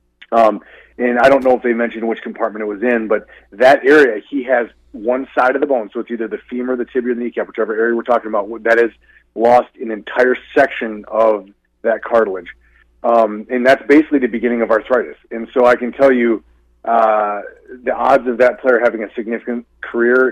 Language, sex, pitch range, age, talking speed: English, male, 110-125 Hz, 30-49, 205 wpm